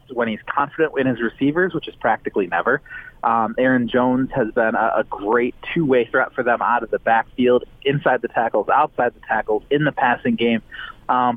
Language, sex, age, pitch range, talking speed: English, male, 30-49, 120-155 Hz, 195 wpm